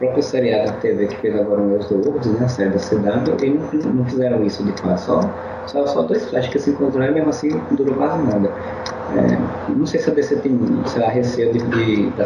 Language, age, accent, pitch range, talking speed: Portuguese, 20-39, Brazilian, 100-135 Hz, 240 wpm